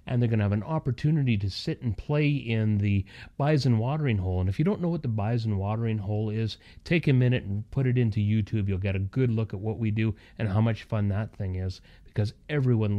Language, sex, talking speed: English, male, 245 wpm